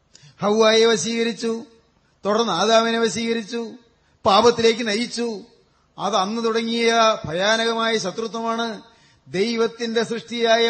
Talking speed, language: 75 wpm, Malayalam